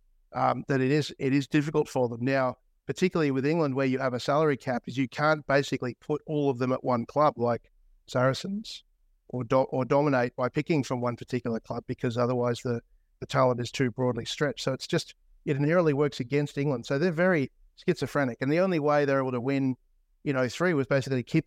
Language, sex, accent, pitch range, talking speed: English, male, Australian, 125-140 Hz, 220 wpm